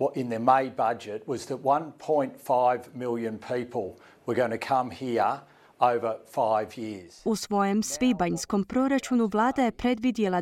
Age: 30-49